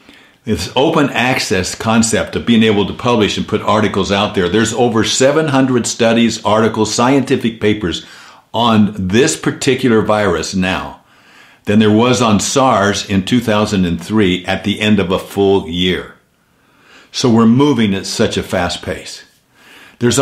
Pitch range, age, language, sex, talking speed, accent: 95-120 Hz, 60-79, English, male, 145 wpm, American